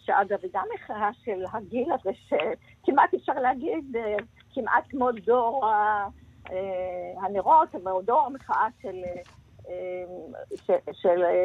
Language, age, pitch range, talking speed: Hebrew, 50-69, 180-245 Hz, 105 wpm